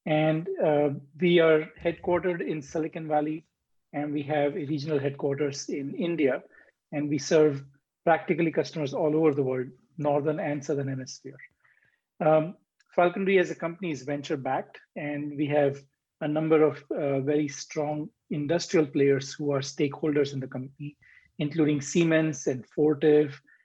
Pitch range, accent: 140-160 Hz, Indian